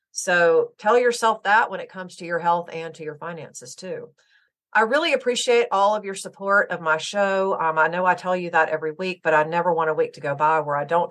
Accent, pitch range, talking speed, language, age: American, 160-205 Hz, 250 wpm, English, 40-59